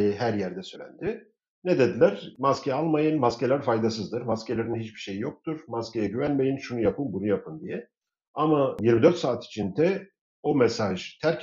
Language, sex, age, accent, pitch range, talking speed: Turkish, male, 50-69, native, 105-150 Hz, 140 wpm